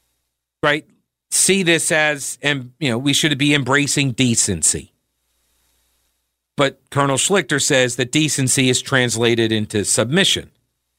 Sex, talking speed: male, 120 wpm